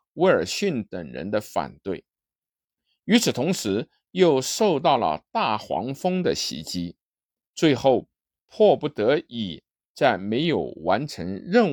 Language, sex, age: Chinese, male, 50-69